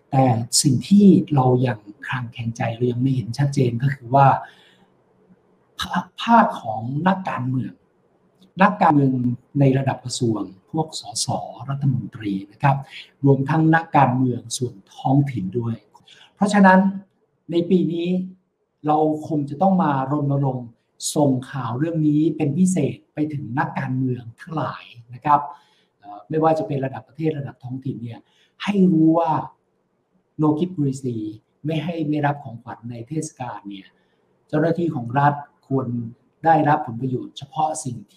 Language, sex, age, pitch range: Thai, male, 60-79, 120-155 Hz